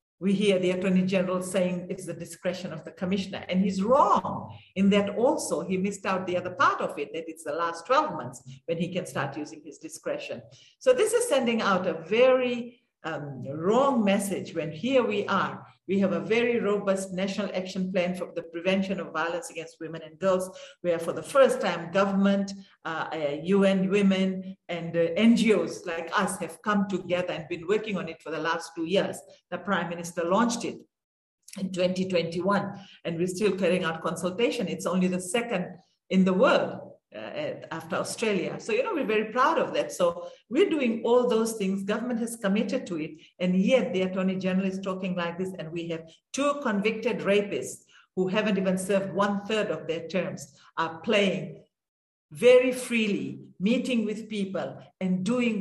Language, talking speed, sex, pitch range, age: English, 185 wpm, female, 170-210 Hz, 50-69